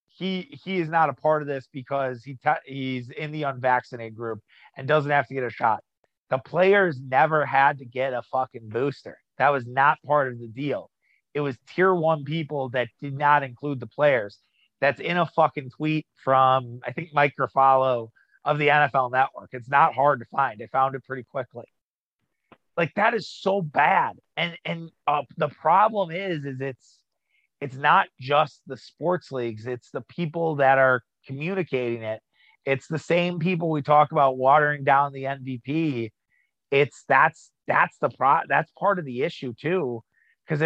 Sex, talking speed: male, 180 wpm